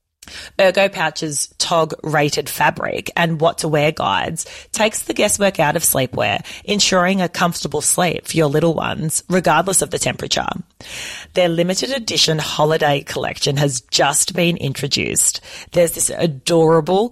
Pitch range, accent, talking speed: 150-180 Hz, Australian, 140 wpm